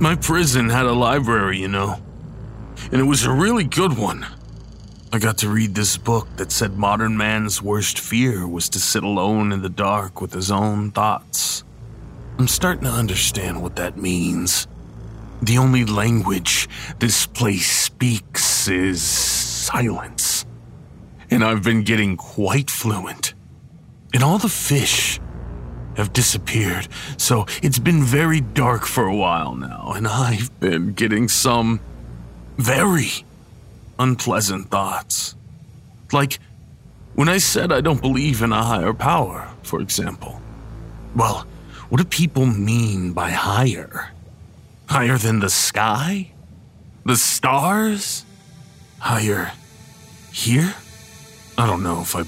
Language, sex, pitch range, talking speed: English, male, 100-130 Hz, 130 wpm